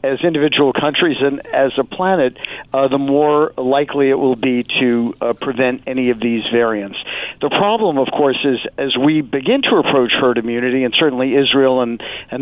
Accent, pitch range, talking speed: American, 130-155 Hz, 185 wpm